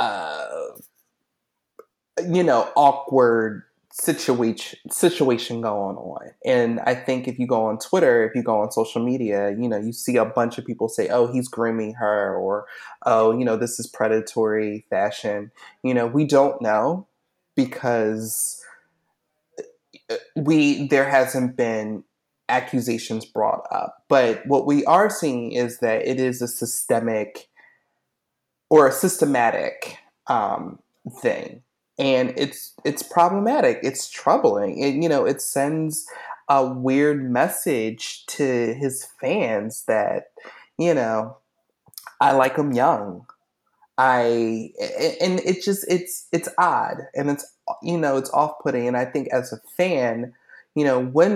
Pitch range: 115-150 Hz